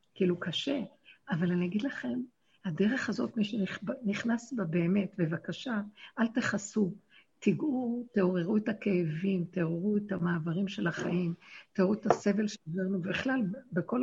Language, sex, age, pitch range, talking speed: Hebrew, female, 60-79, 175-215 Hz, 130 wpm